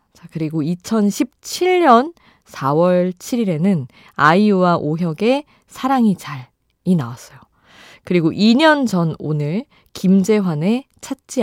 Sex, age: female, 20-39